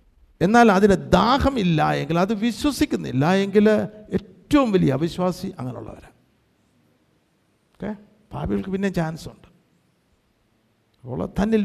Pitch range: 150-220 Hz